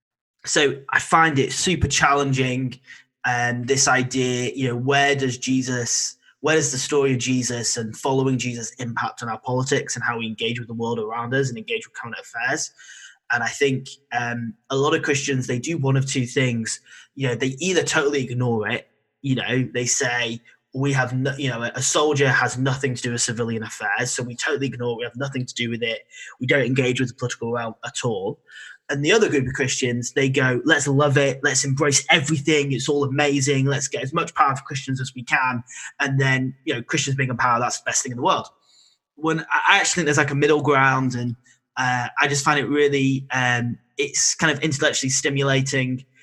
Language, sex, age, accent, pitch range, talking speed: English, male, 20-39, British, 125-145 Hz, 210 wpm